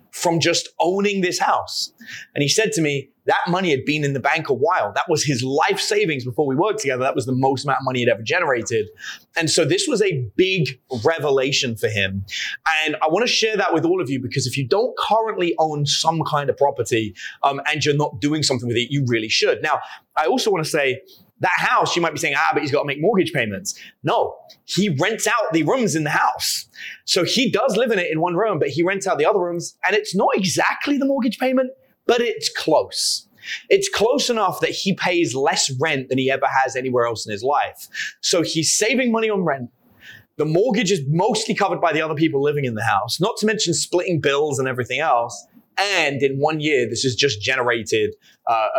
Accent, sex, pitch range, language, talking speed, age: British, male, 135-210 Hz, English, 230 wpm, 30-49